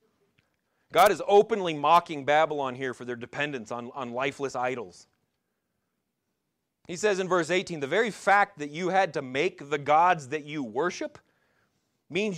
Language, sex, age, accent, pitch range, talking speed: English, male, 30-49, American, 145-205 Hz, 155 wpm